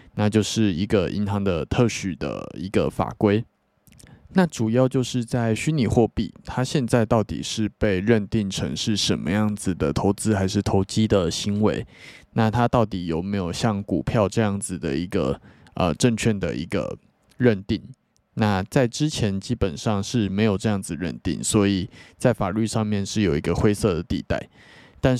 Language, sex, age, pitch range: Chinese, male, 20-39, 100-120 Hz